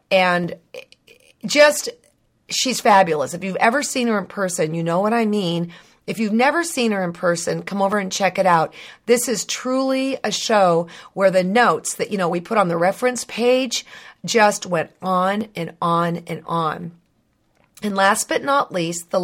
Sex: female